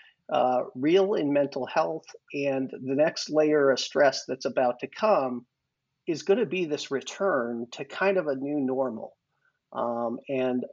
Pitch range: 125-145 Hz